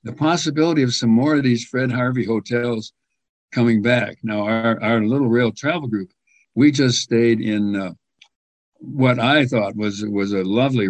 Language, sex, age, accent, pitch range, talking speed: English, male, 60-79, American, 105-125 Hz, 170 wpm